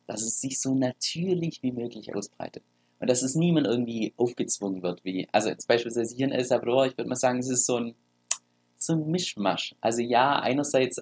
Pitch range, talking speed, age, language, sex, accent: 95-130 Hz, 200 wpm, 20-39, German, male, German